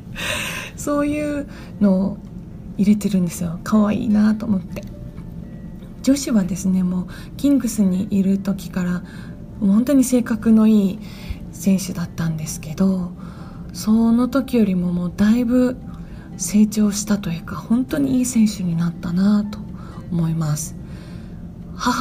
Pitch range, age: 180-215 Hz, 20-39